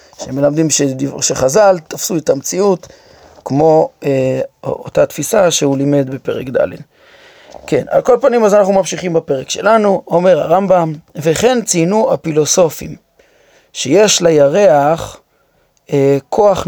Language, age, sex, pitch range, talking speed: Hebrew, 30-49, male, 145-210 Hz, 110 wpm